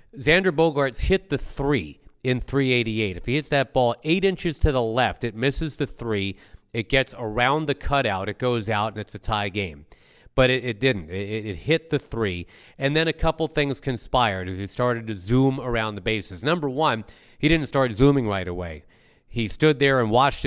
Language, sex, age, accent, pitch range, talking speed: English, male, 40-59, American, 105-140 Hz, 205 wpm